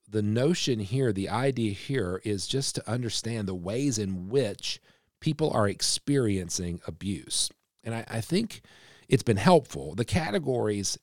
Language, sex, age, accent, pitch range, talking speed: English, male, 40-59, American, 95-115 Hz, 145 wpm